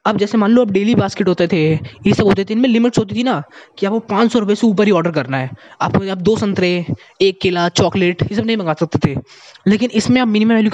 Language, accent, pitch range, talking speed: Hindi, native, 170-225 Hz, 255 wpm